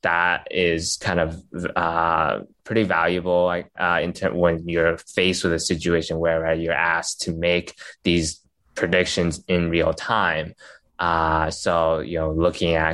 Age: 20-39